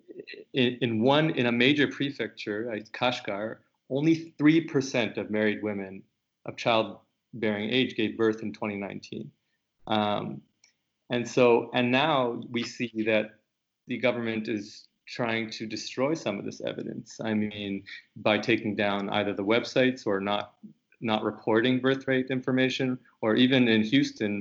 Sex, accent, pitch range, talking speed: male, American, 105-125 Hz, 140 wpm